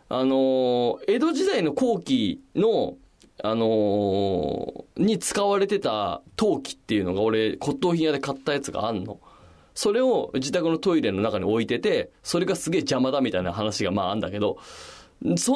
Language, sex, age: Japanese, male, 20-39